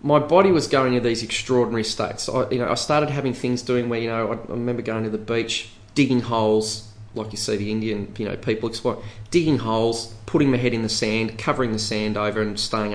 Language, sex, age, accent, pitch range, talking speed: English, male, 30-49, Australian, 105-125 Hz, 235 wpm